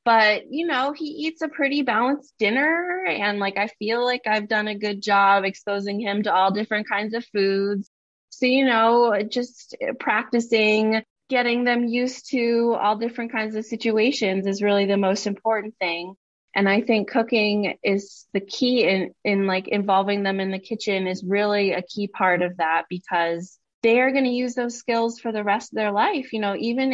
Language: English